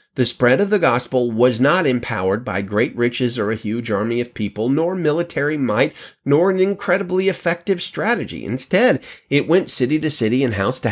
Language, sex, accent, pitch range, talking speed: English, male, American, 115-170 Hz, 185 wpm